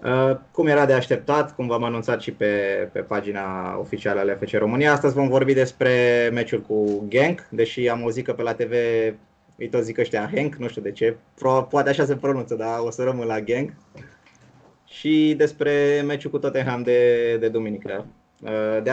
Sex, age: male, 20-39